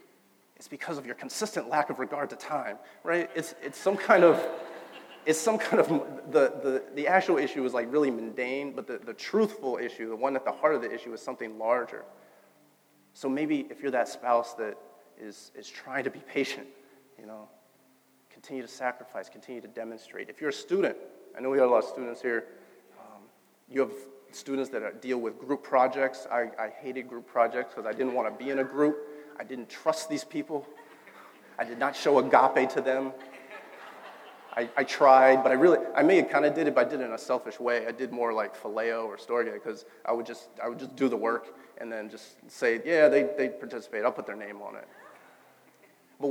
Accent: American